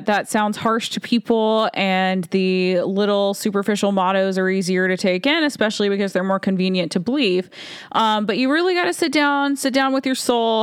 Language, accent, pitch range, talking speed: English, American, 190-225 Hz, 200 wpm